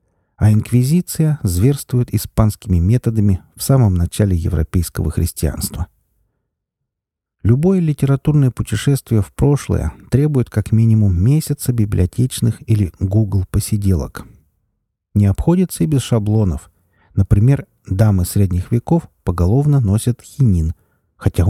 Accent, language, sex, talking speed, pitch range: native, Russian, male, 100 wpm, 90-125 Hz